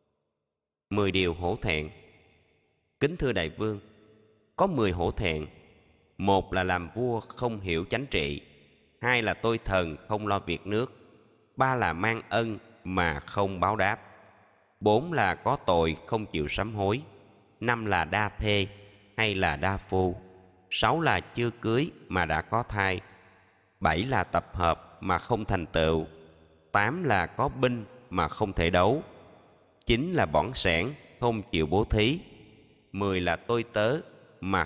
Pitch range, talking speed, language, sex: 85-110 Hz, 155 wpm, Vietnamese, male